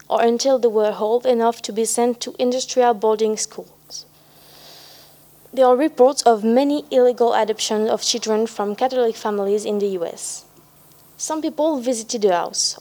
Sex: female